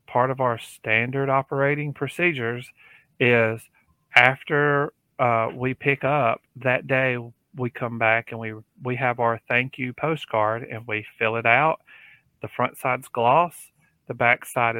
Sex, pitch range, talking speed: male, 115-135 Hz, 150 wpm